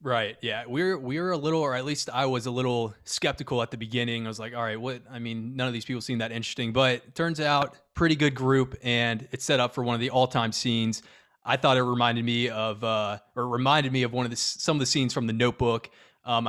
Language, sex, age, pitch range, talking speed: English, male, 20-39, 115-135 Hz, 270 wpm